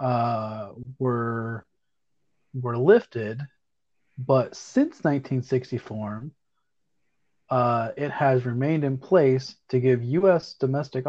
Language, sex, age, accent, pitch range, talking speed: English, male, 30-49, American, 115-140 Hz, 90 wpm